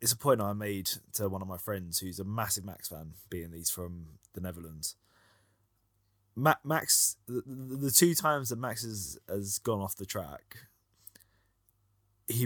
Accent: British